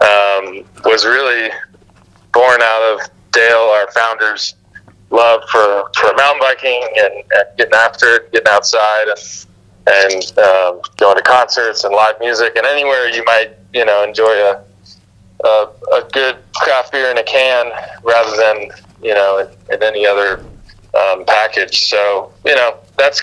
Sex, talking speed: male, 150 wpm